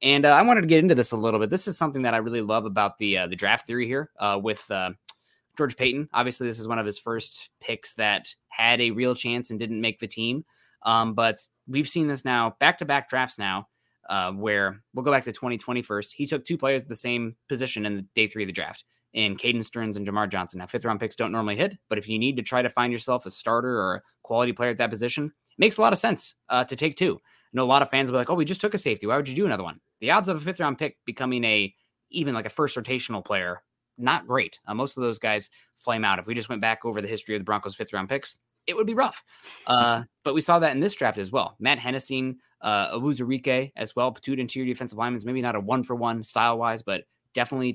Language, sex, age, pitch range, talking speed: English, male, 20-39, 110-135 Hz, 270 wpm